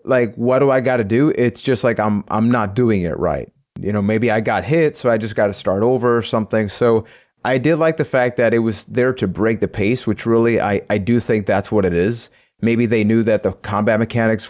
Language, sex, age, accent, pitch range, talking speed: English, male, 30-49, American, 110-130 Hz, 255 wpm